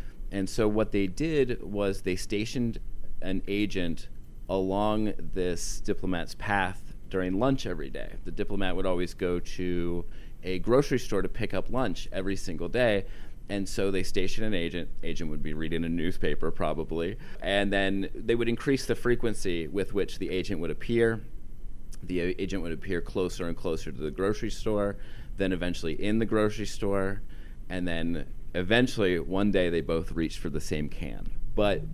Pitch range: 85-110 Hz